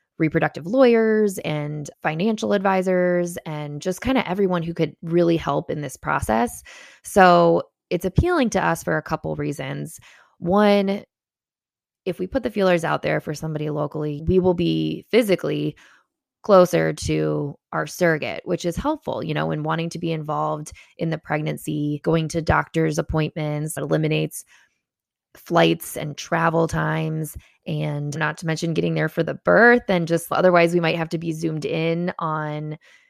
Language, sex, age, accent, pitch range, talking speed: English, female, 20-39, American, 155-185 Hz, 160 wpm